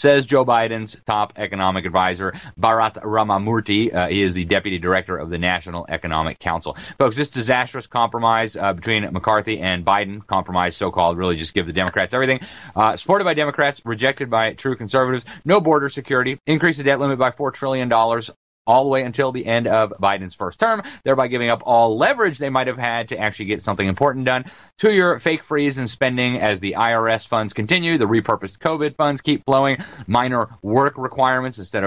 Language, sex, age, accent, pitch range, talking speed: English, male, 30-49, American, 105-135 Hz, 185 wpm